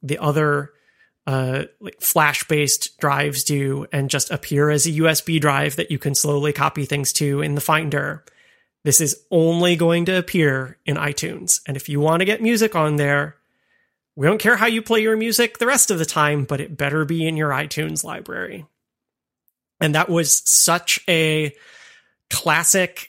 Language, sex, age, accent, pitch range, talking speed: English, male, 30-49, American, 145-175 Hz, 175 wpm